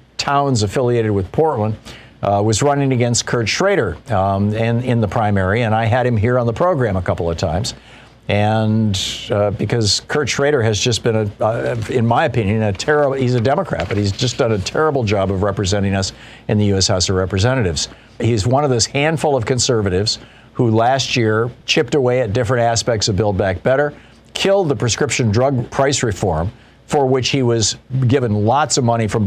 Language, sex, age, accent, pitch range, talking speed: English, male, 50-69, American, 105-125 Hz, 195 wpm